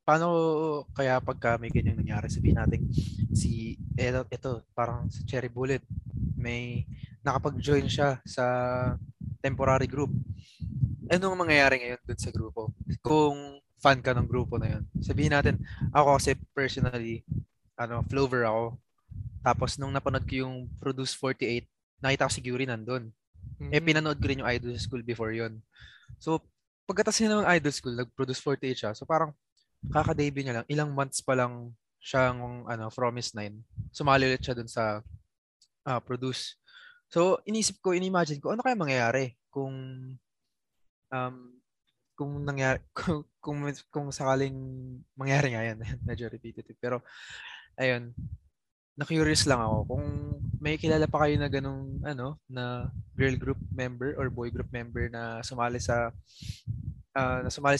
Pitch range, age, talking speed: 120-140 Hz, 20-39, 150 wpm